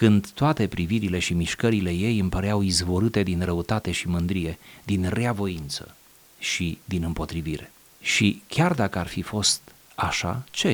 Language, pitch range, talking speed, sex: Romanian, 85-110 Hz, 145 wpm, male